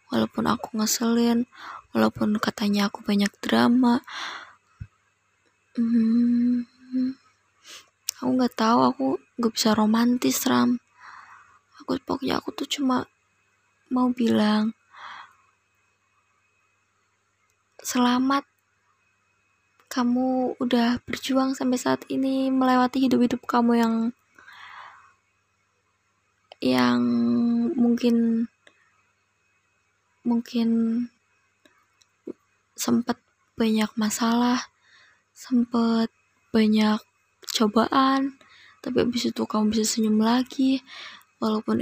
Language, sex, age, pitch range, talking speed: Indonesian, female, 20-39, 215-250 Hz, 75 wpm